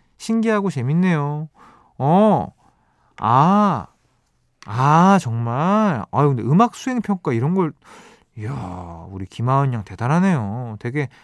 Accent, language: native, Korean